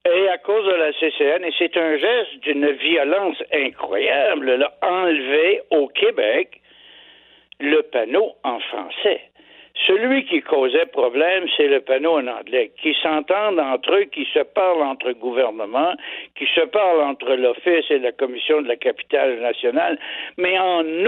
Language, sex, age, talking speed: French, male, 60-79, 150 wpm